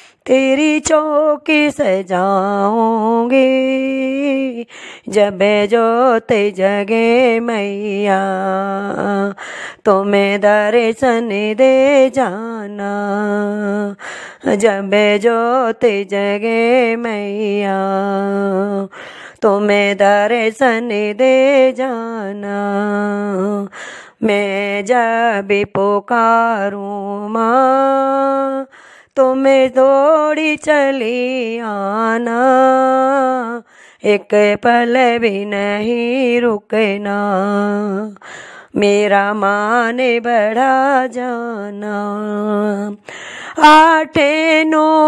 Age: 30-49